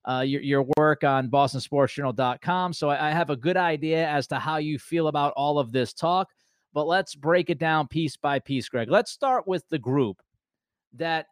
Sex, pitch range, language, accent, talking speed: male, 135-170 Hz, English, American, 200 wpm